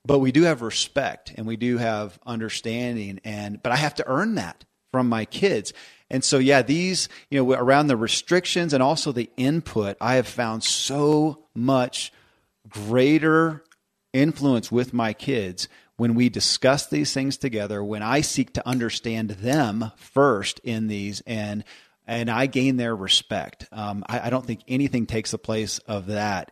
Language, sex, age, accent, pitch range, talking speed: English, male, 40-59, American, 105-130 Hz, 170 wpm